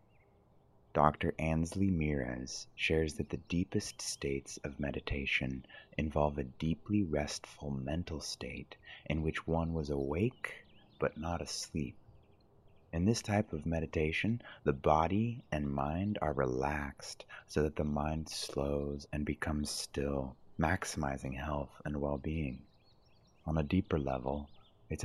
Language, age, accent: English, 30-49, American